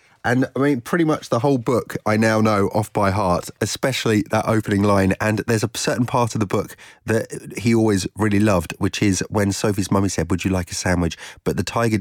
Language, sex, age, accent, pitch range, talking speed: English, male, 30-49, British, 95-120 Hz, 225 wpm